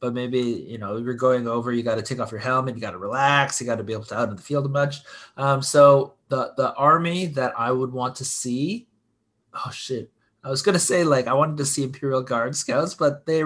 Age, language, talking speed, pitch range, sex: 20-39, English, 260 wpm, 110-140 Hz, male